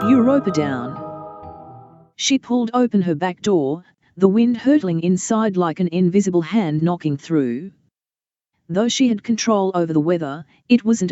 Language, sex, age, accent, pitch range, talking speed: English, female, 40-59, Australian, 165-225 Hz, 145 wpm